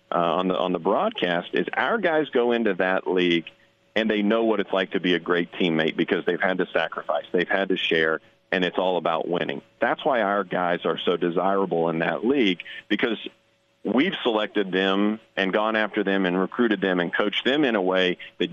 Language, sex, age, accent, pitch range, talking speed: English, male, 40-59, American, 90-110 Hz, 210 wpm